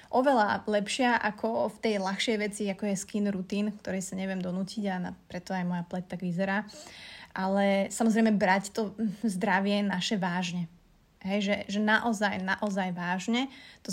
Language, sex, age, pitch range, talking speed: Slovak, female, 30-49, 190-210 Hz, 155 wpm